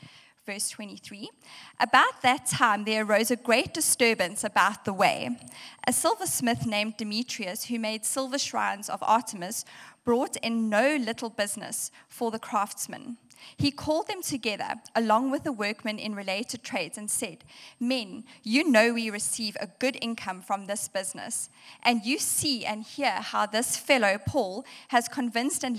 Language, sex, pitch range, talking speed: English, female, 215-255 Hz, 155 wpm